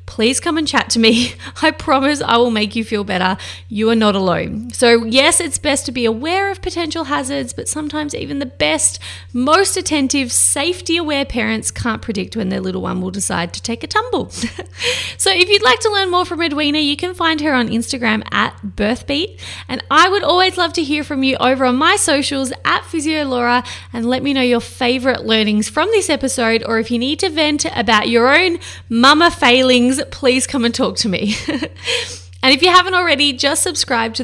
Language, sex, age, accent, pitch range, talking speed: English, female, 20-39, Australian, 215-305 Hz, 205 wpm